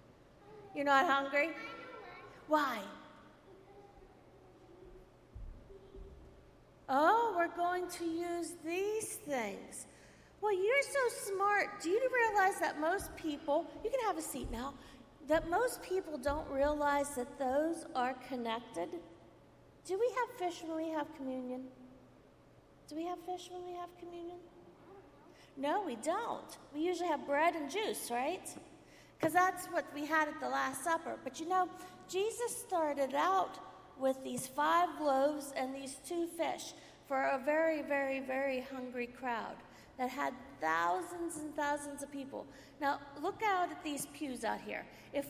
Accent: American